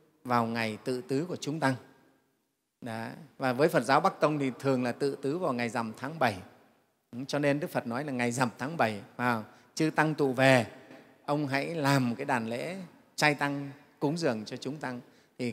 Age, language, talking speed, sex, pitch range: 30-49, Vietnamese, 210 wpm, male, 130-175 Hz